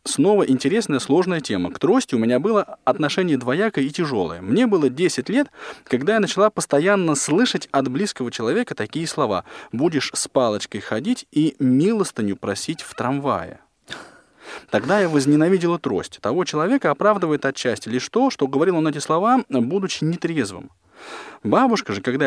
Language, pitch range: Russian, 130-180 Hz